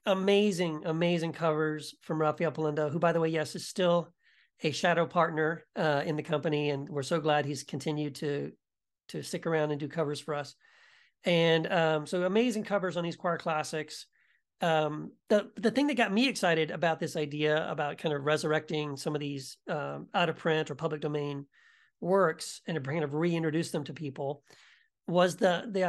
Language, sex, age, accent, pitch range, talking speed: English, male, 40-59, American, 150-185 Hz, 190 wpm